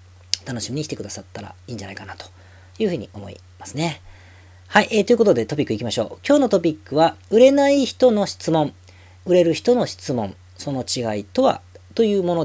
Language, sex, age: Japanese, female, 40-59